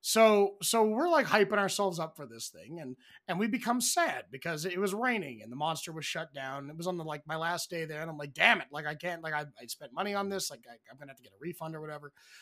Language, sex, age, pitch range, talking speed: English, male, 30-49, 145-190 Hz, 290 wpm